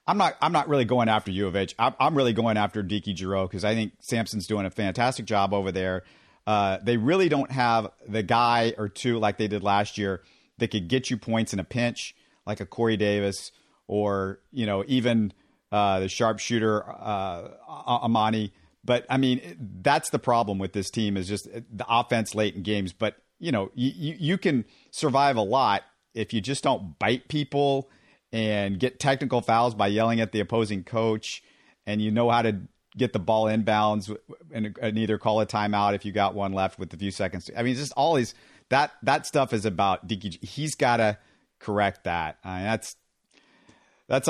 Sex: male